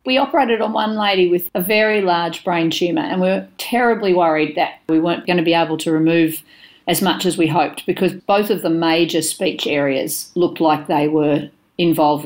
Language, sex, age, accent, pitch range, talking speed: English, female, 40-59, Australian, 160-205 Hz, 205 wpm